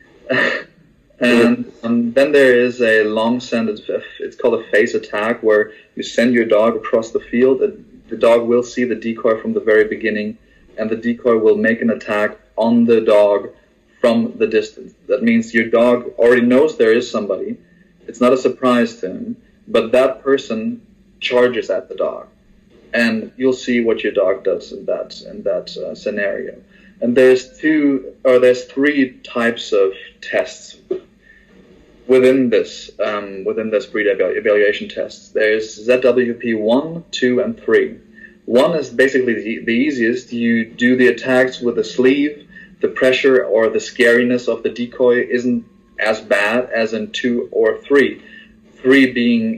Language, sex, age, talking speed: English, male, 30-49, 160 wpm